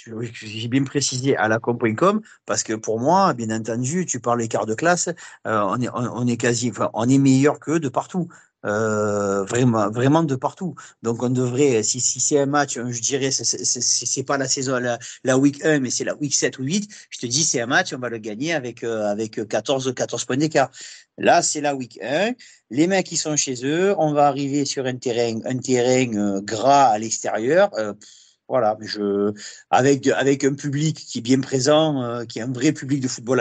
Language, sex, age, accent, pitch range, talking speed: French, male, 40-59, French, 115-150 Hz, 220 wpm